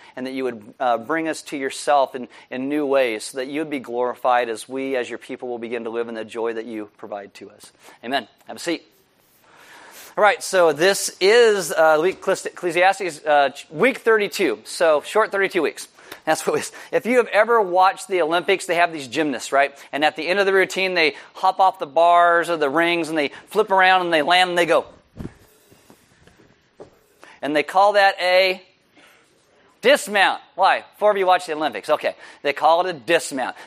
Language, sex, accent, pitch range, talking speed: English, male, American, 145-190 Hz, 205 wpm